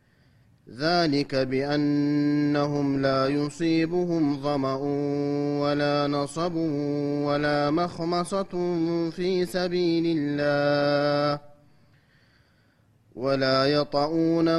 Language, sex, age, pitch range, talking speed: Amharic, male, 30-49, 140-165 Hz, 60 wpm